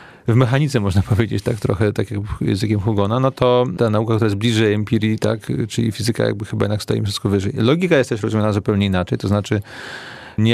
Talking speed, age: 205 wpm, 30-49